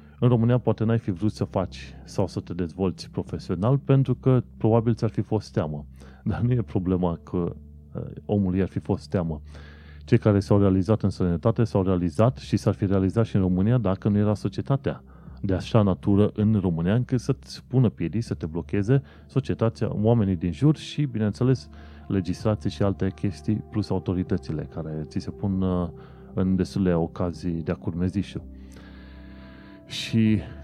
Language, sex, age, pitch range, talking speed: Romanian, male, 30-49, 90-110 Hz, 165 wpm